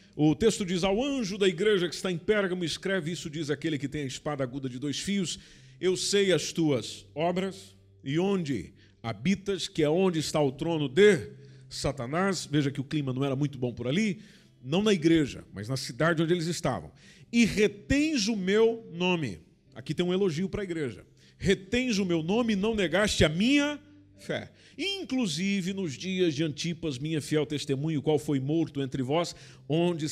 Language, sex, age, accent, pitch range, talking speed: Portuguese, male, 50-69, Brazilian, 140-195 Hz, 185 wpm